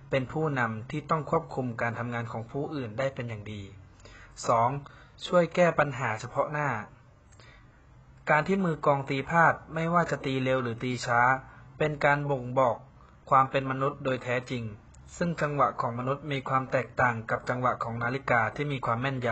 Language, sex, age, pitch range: Thai, male, 20-39, 120-150 Hz